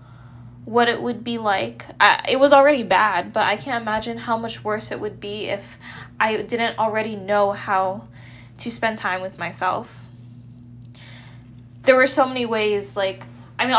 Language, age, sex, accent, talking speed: English, 10-29, female, American, 165 wpm